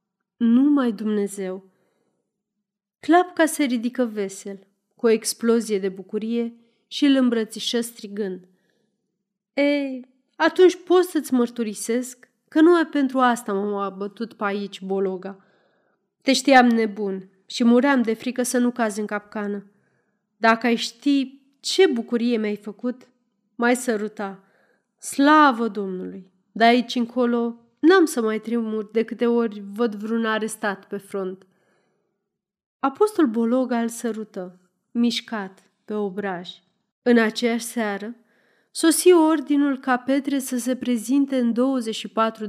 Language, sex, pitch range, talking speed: Romanian, female, 205-255 Hz, 125 wpm